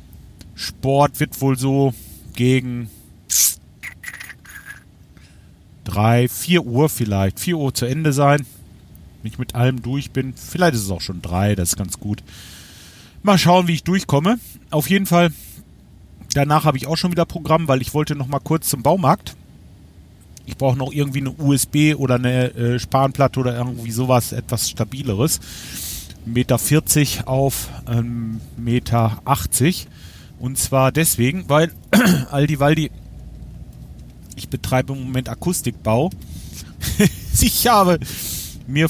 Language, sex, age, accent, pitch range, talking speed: German, male, 40-59, German, 95-140 Hz, 130 wpm